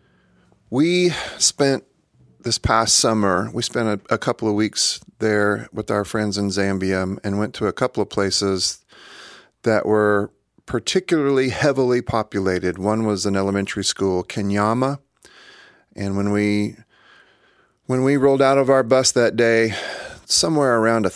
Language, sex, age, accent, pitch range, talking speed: English, male, 40-59, American, 100-120 Hz, 140 wpm